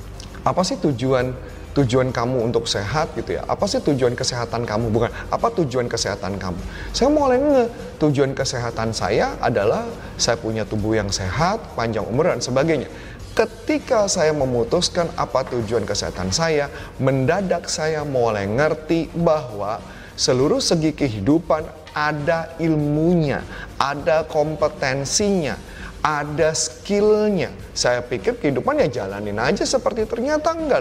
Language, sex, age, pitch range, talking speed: Indonesian, male, 30-49, 110-165 Hz, 125 wpm